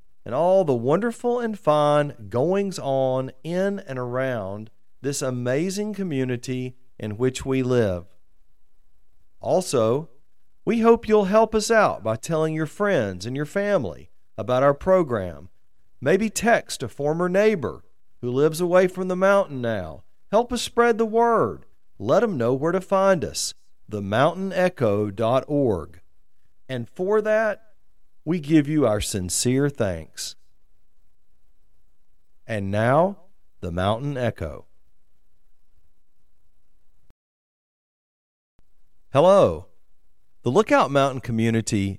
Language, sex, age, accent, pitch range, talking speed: English, male, 40-59, American, 105-170 Hz, 110 wpm